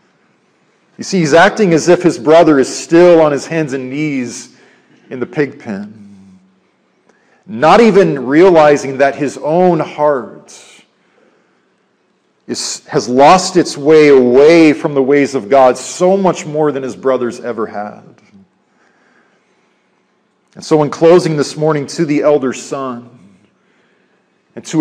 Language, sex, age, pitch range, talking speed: English, male, 40-59, 130-165 Hz, 135 wpm